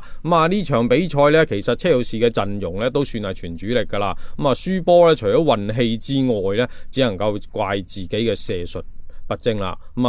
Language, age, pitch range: Chinese, 20-39, 105-145 Hz